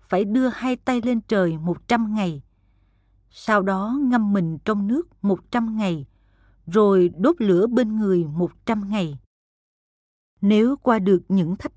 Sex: female